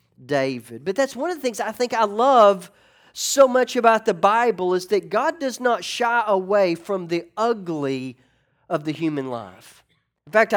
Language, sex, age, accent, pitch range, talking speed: English, male, 40-59, American, 140-210 Hz, 180 wpm